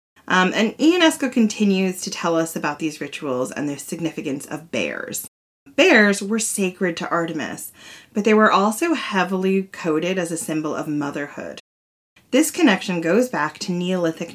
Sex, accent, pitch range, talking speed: female, American, 160-215 Hz, 155 wpm